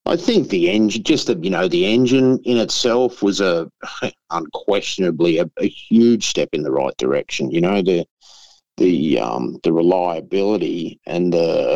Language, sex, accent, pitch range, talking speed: English, male, Australian, 90-110 Hz, 165 wpm